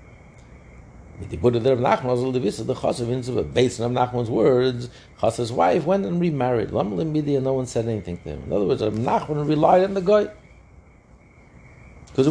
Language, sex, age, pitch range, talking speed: English, male, 60-79, 105-130 Hz, 160 wpm